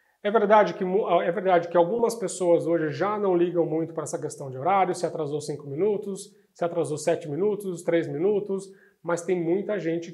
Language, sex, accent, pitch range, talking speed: Portuguese, male, Brazilian, 155-185 Hz, 190 wpm